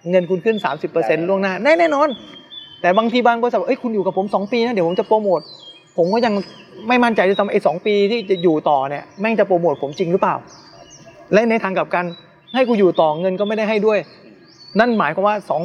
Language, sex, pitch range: English, male, 175-215 Hz